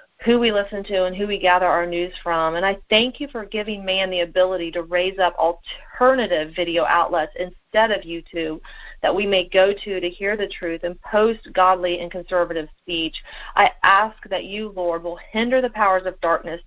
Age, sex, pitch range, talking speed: 40-59, female, 170-200 Hz, 200 wpm